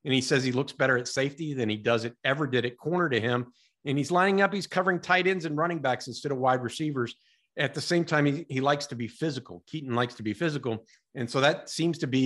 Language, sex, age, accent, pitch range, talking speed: English, male, 50-69, American, 125-155 Hz, 265 wpm